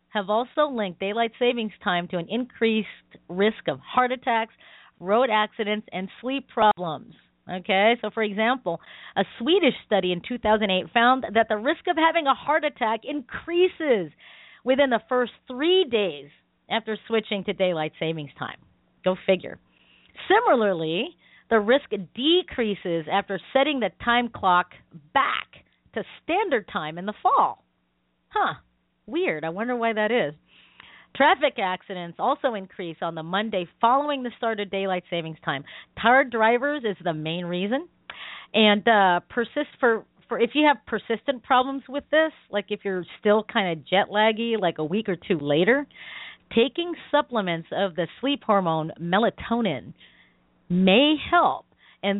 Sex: female